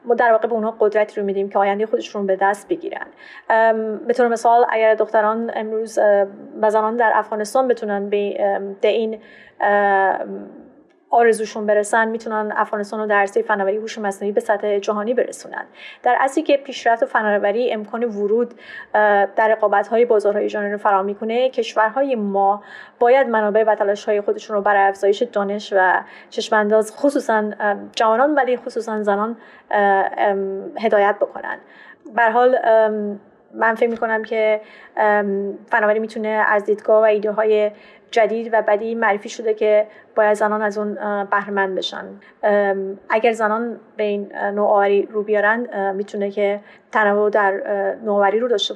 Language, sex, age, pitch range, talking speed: Persian, female, 30-49, 205-225 Hz, 135 wpm